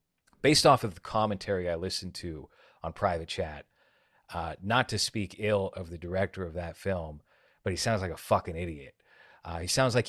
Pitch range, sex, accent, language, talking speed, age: 85-100 Hz, male, American, English, 195 wpm, 30-49